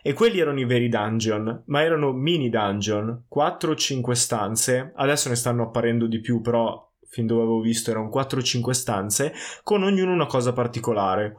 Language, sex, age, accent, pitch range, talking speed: Italian, male, 20-39, native, 120-150 Hz, 165 wpm